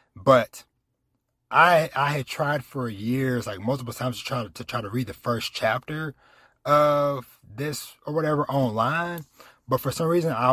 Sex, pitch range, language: male, 120-140 Hz, English